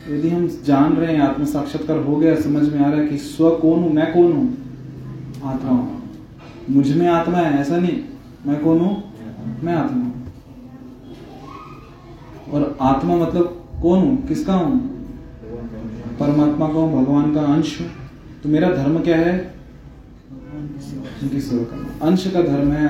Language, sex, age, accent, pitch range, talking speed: Hindi, male, 20-39, native, 130-160 Hz, 145 wpm